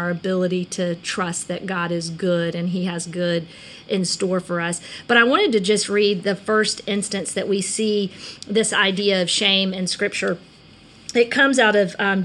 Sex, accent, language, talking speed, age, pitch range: female, American, English, 190 wpm, 40-59, 195-230 Hz